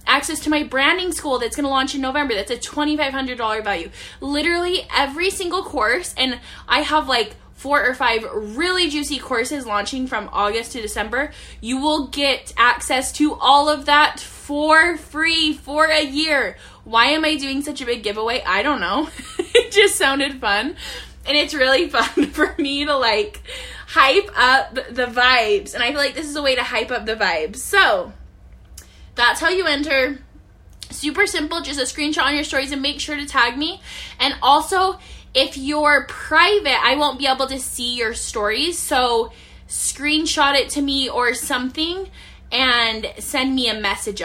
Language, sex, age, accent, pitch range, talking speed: English, female, 10-29, American, 245-310 Hz, 180 wpm